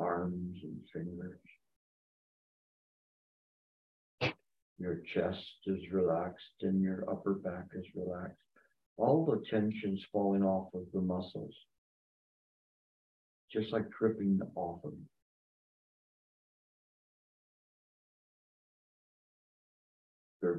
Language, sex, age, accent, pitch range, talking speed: English, male, 50-69, American, 85-95 Hz, 80 wpm